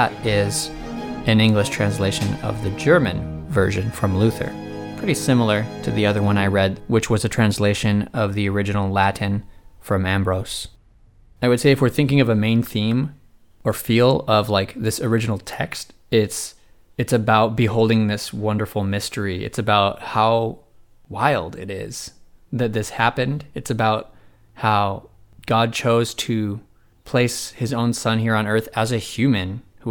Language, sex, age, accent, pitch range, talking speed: English, male, 20-39, American, 100-115 Hz, 155 wpm